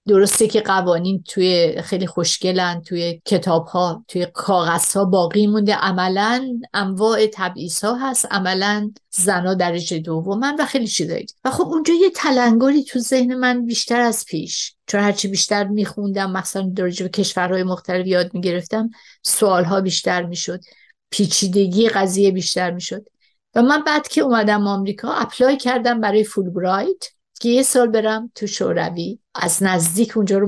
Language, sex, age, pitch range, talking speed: Persian, female, 50-69, 185-230 Hz, 150 wpm